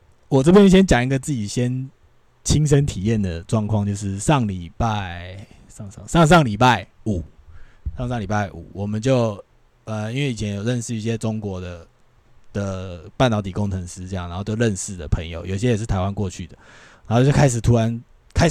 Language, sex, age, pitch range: Chinese, male, 20-39, 105-135 Hz